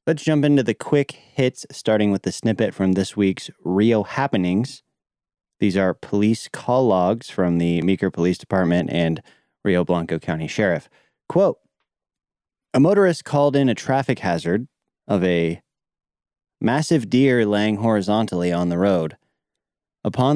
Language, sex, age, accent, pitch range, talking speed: English, male, 30-49, American, 95-130 Hz, 140 wpm